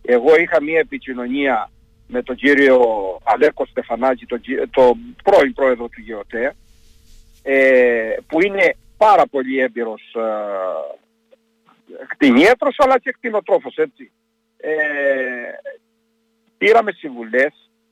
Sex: male